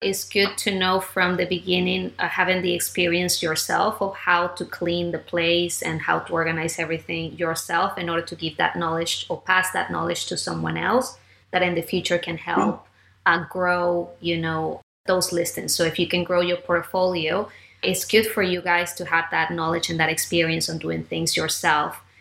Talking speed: 195 wpm